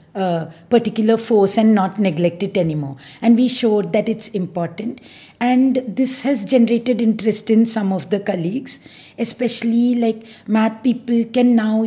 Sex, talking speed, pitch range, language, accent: female, 145 wpm, 185-230 Hz, English, Indian